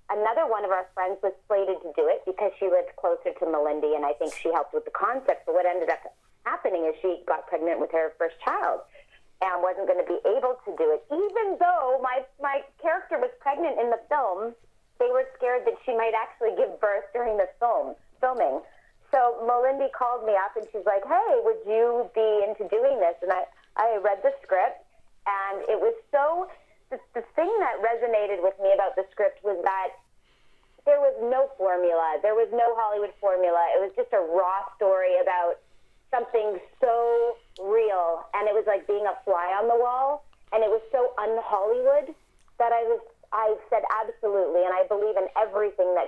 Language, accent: English, American